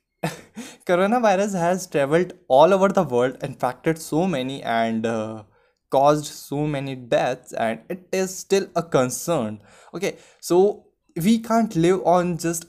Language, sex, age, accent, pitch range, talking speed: Hindi, male, 10-29, native, 130-175 Hz, 140 wpm